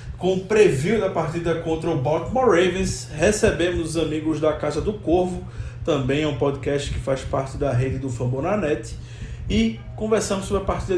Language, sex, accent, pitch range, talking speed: Portuguese, male, Brazilian, 150-205 Hz, 175 wpm